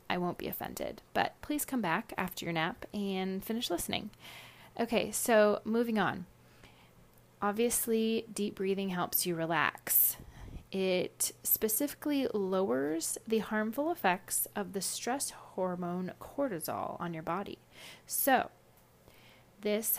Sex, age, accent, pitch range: female, 30-49, American, 190-245 Hz